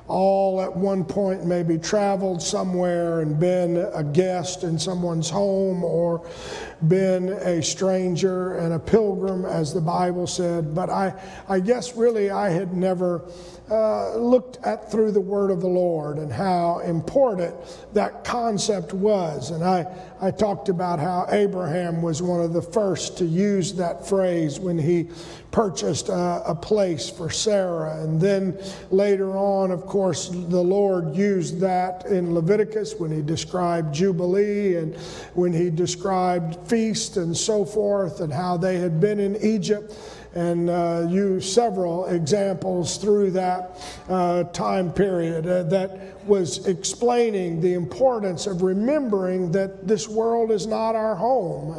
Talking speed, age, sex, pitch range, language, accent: 145 wpm, 50-69, male, 175-200 Hz, English, American